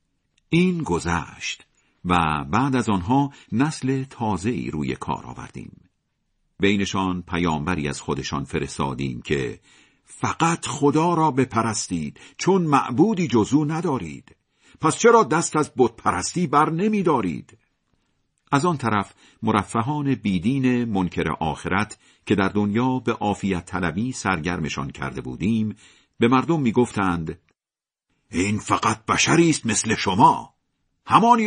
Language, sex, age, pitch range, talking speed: Persian, male, 50-69, 100-160 Hz, 115 wpm